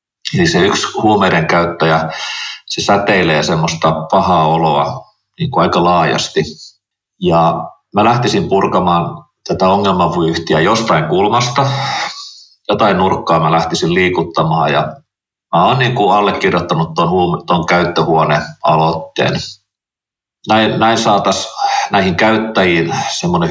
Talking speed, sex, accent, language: 105 wpm, male, native, Finnish